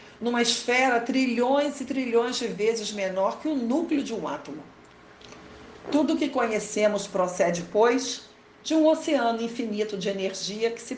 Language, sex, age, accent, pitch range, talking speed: Portuguese, female, 50-69, Brazilian, 190-255 Hz, 155 wpm